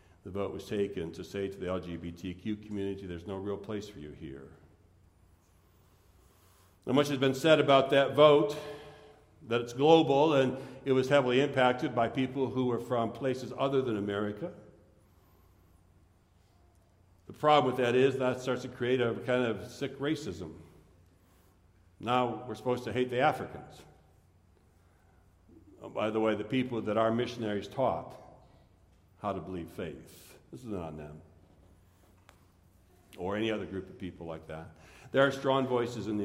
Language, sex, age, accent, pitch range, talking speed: English, male, 60-79, American, 90-120 Hz, 155 wpm